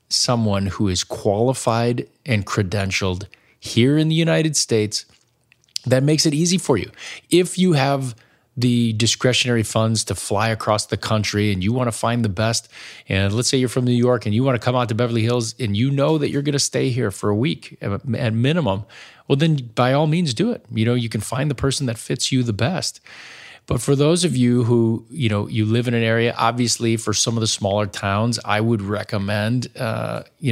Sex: male